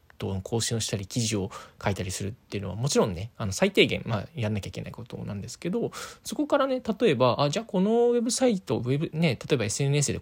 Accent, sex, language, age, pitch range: native, male, Japanese, 20-39, 110-160 Hz